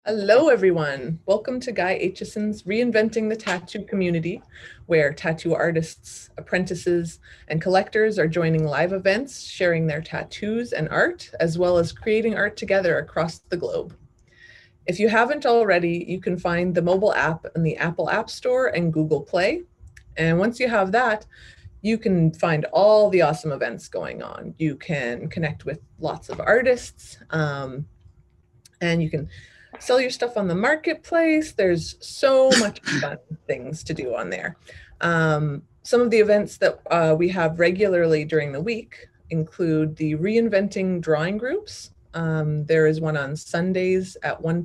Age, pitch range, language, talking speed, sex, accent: 30-49, 155-205 Hz, English, 160 wpm, female, American